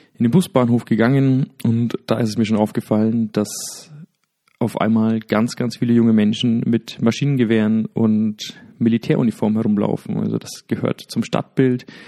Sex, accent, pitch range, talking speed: male, German, 110-120 Hz, 145 wpm